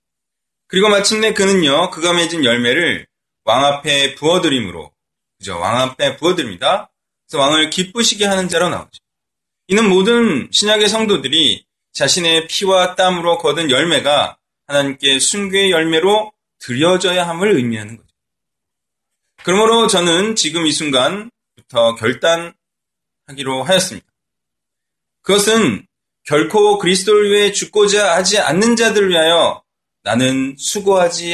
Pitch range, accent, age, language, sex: 145-215 Hz, native, 20-39, Korean, male